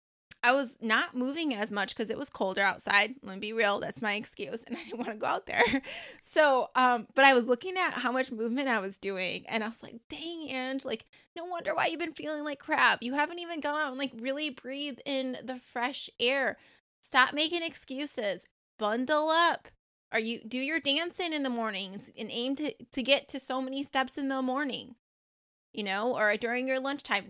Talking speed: 215 wpm